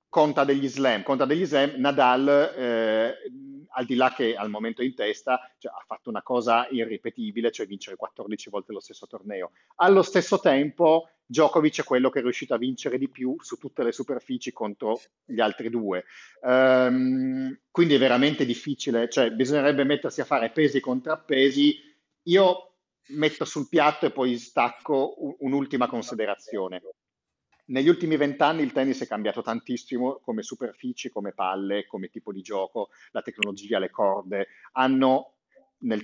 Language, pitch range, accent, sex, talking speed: Italian, 115-150 Hz, native, male, 155 wpm